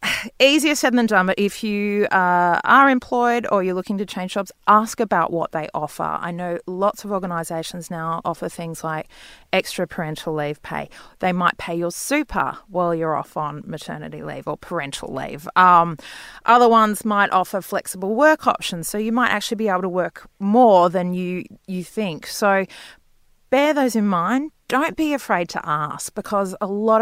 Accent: Australian